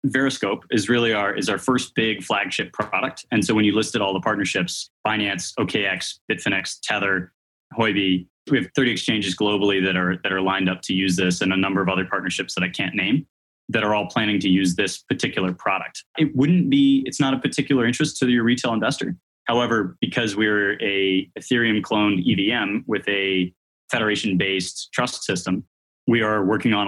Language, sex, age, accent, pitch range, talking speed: English, male, 20-39, American, 95-115 Hz, 190 wpm